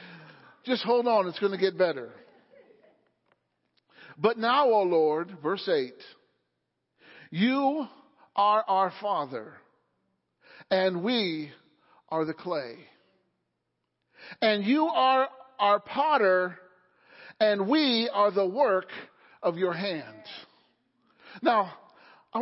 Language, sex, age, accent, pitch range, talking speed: English, male, 50-69, American, 200-270 Hz, 100 wpm